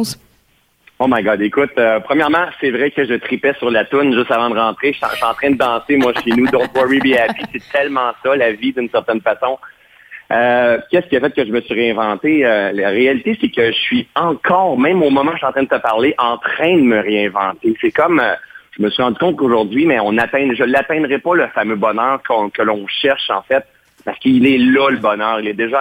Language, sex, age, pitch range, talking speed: French, male, 30-49, 110-140 Hz, 250 wpm